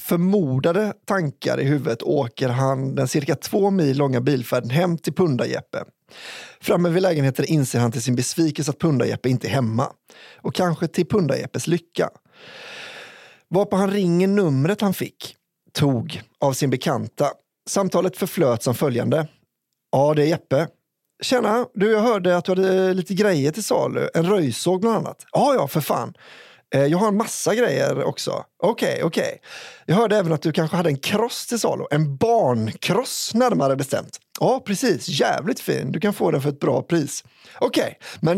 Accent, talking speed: native, 175 wpm